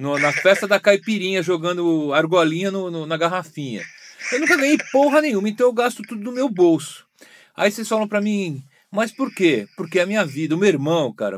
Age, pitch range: 40-59, 150-215 Hz